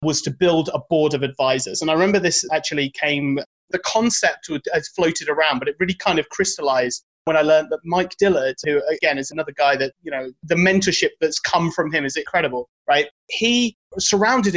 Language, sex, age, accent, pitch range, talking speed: English, male, 30-49, British, 150-190 Hz, 200 wpm